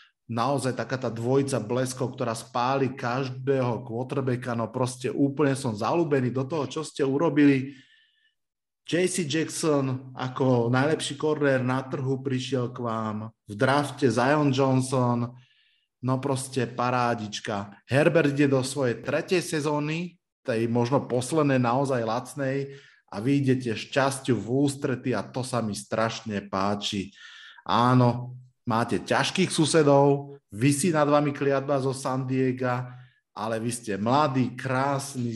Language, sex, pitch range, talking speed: Slovak, male, 115-140 Hz, 125 wpm